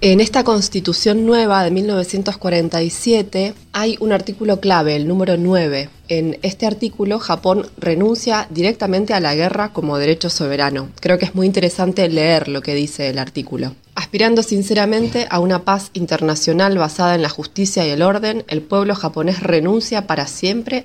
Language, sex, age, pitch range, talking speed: Spanish, female, 20-39, 155-195 Hz, 160 wpm